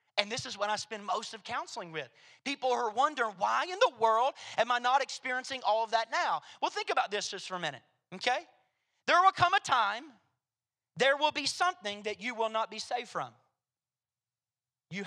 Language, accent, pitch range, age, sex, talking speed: English, American, 175-270 Hz, 40-59, male, 205 wpm